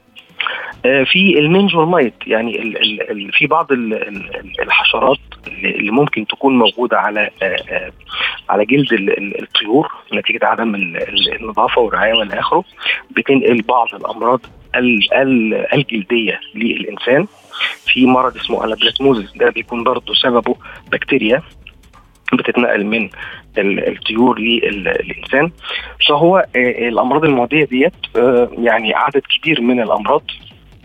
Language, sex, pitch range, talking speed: Arabic, male, 115-150 Hz, 115 wpm